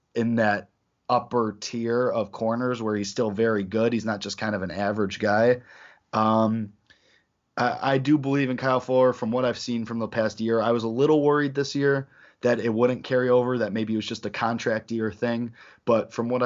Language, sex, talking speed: English, male, 215 wpm